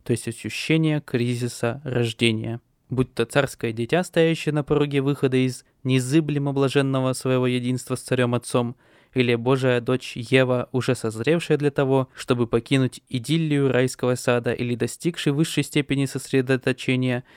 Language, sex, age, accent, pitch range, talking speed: Russian, male, 20-39, native, 120-150 Hz, 130 wpm